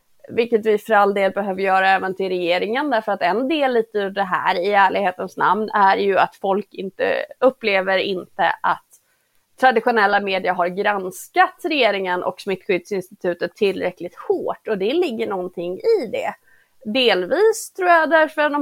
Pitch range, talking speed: 200-280 Hz, 160 wpm